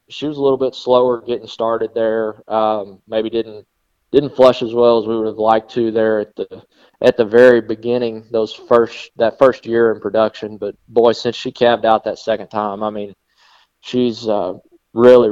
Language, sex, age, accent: English, male, 20-39, American